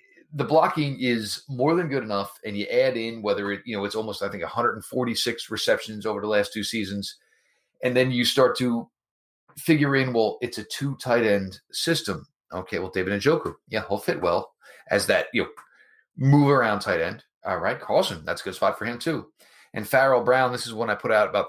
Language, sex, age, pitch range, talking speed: English, male, 30-49, 110-145 Hz, 220 wpm